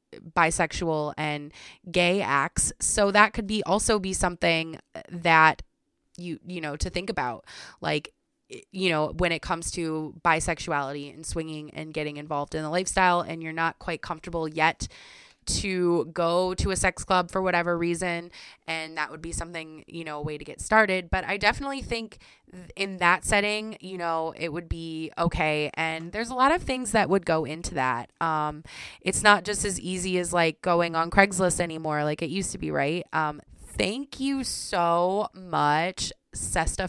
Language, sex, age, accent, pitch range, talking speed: English, female, 20-39, American, 160-190 Hz, 175 wpm